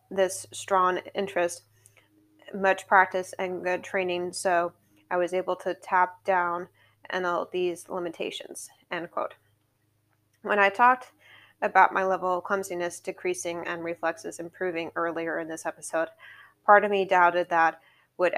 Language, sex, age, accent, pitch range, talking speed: English, female, 20-39, American, 170-190 Hz, 140 wpm